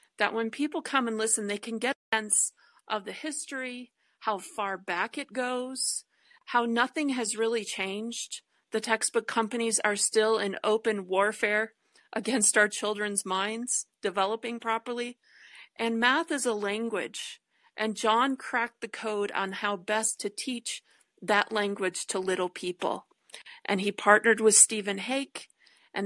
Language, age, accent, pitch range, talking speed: English, 40-59, American, 205-240 Hz, 150 wpm